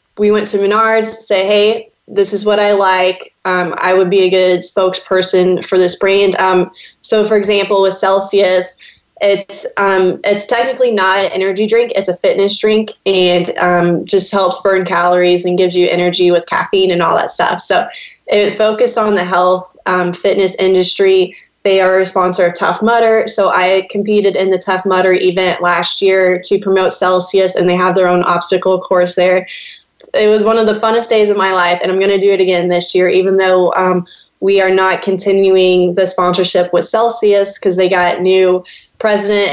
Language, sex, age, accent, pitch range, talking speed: English, female, 20-39, American, 185-205 Hz, 195 wpm